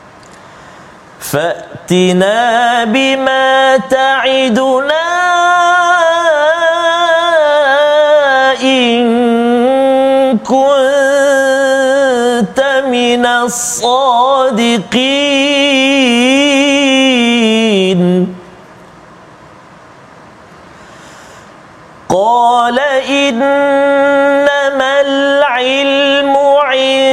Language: Malayalam